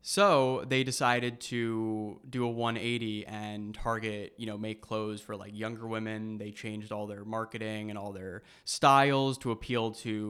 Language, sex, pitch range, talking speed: English, male, 110-125 Hz, 170 wpm